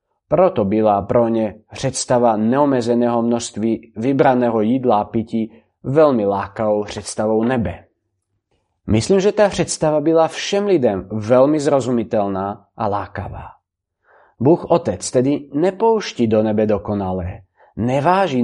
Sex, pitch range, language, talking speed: male, 110-140 Hz, Czech, 110 wpm